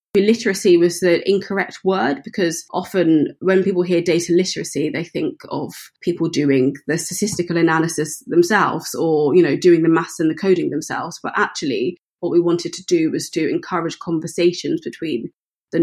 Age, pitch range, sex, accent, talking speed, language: 20-39, 165-195 Hz, female, British, 165 wpm, English